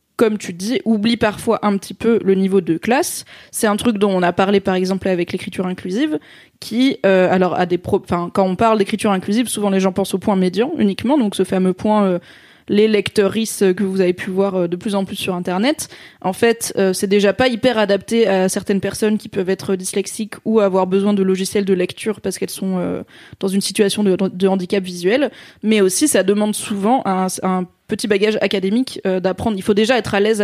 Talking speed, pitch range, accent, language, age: 225 wpm, 190-220 Hz, French, French, 20-39